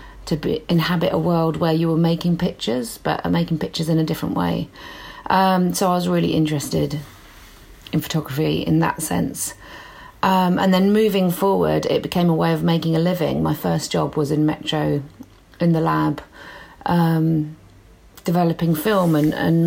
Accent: British